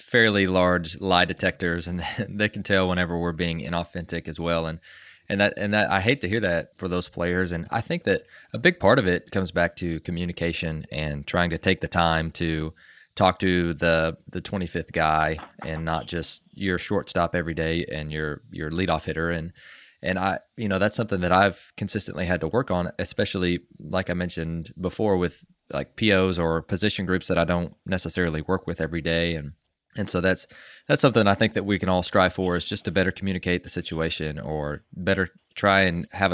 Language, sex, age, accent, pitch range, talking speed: English, male, 20-39, American, 85-95 Hz, 205 wpm